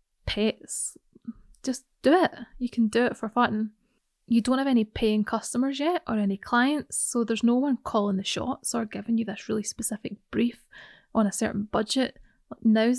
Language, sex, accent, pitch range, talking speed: English, female, British, 210-250 Hz, 180 wpm